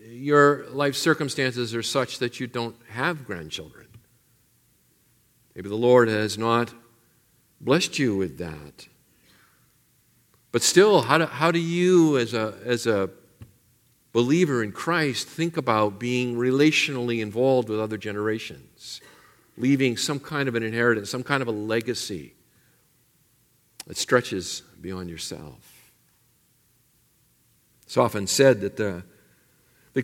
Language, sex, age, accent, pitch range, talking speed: English, male, 50-69, American, 110-135 Hz, 125 wpm